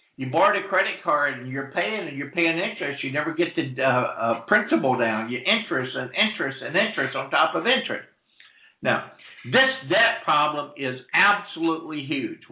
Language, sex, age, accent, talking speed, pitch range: English, male, 60-79, American, 175 wpm, 135-185 Hz